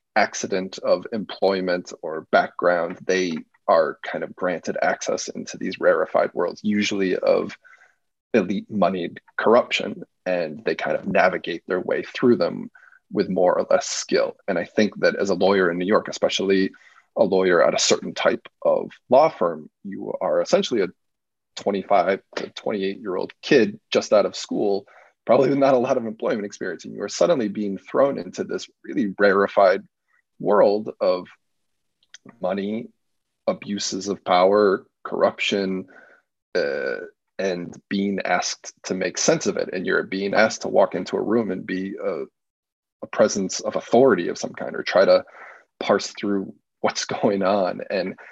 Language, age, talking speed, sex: English, 20-39, 160 wpm, male